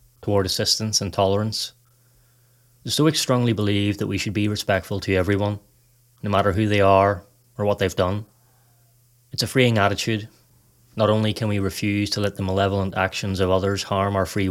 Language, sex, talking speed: English, male, 180 wpm